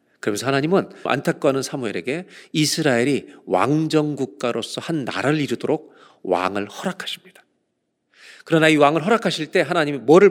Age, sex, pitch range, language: 40-59, male, 125-180 Hz, Korean